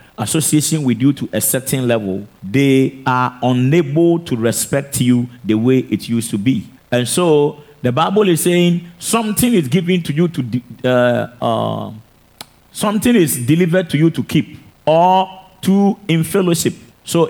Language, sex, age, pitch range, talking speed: English, male, 50-69, 130-175 Hz, 155 wpm